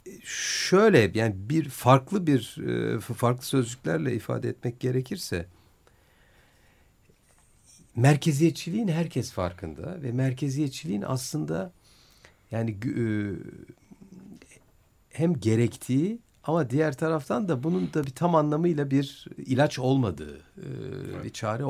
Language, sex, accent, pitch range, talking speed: Turkish, male, native, 95-140 Hz, 90 wpm